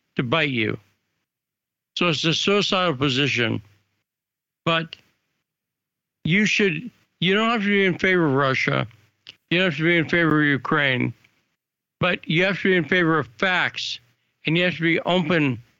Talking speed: 165 wpm